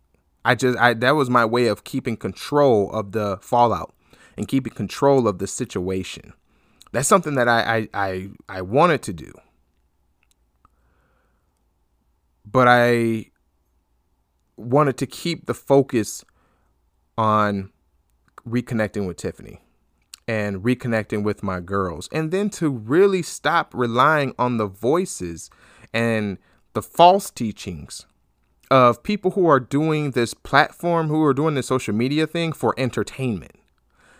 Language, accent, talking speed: English, American, 130 wpm